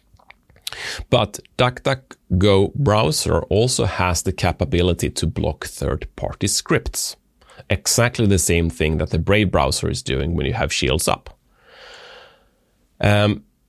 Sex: male